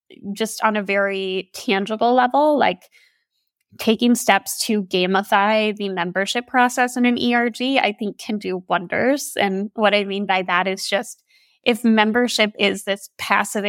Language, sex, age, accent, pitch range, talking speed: English, female, 10-29, American, 200-245 Hz, 155 wpm